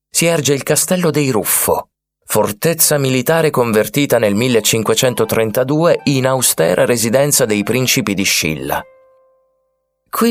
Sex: male